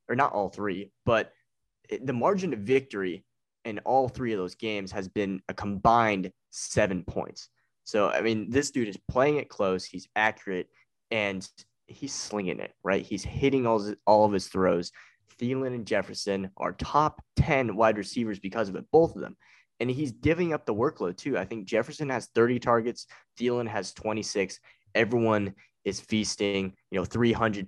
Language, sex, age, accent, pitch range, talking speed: English, male, 20-39, American, 100-125 Hz, 175 wpm